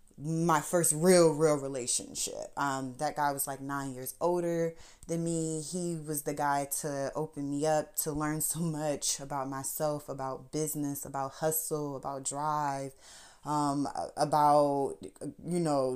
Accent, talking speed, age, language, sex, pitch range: American, 145 wpm, 20-39, English, female, 140-165 Hz